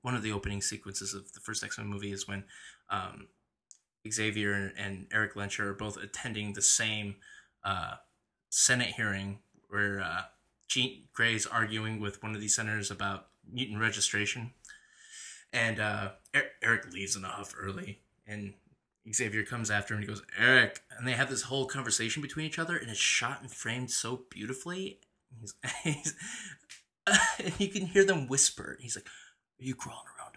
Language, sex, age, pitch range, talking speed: English, male, 20-39, 105-170 Hz, 165 wpm